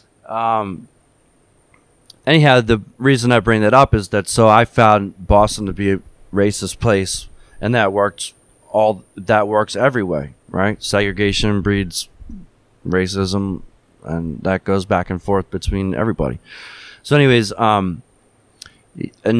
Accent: American